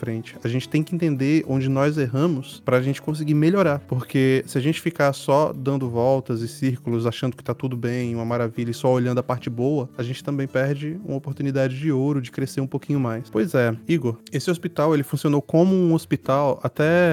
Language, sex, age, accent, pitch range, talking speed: Portuguese, male, 20-39, Brazilian, 130-155 Hz, 210 wpm